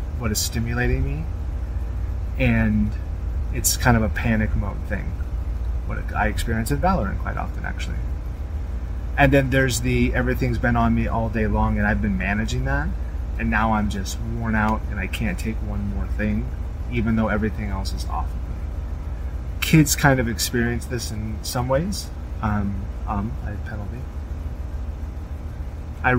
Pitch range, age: 75-110 Hz, 30-49